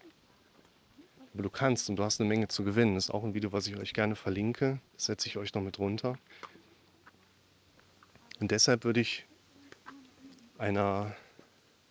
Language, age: German, 30-49